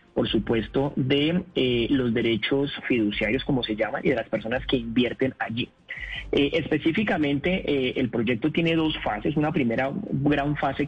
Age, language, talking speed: 30-49, Spanish, 165 wpm